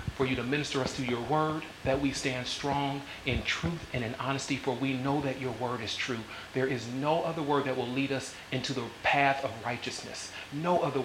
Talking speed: 225 wpm